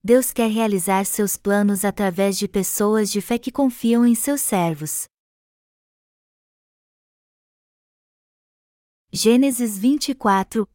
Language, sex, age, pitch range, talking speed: Portuguese, female, 20-39, 190-235 Hz, 95 wpm